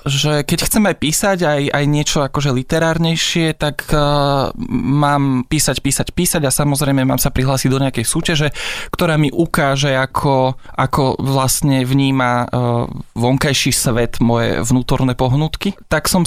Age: 20-39